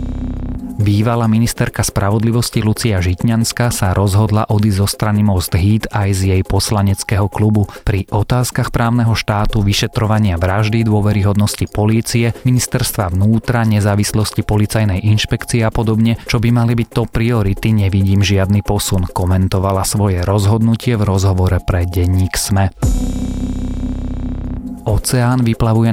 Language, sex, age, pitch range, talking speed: Slovak, male, 30-49, 95-115 Hz, 120 wpm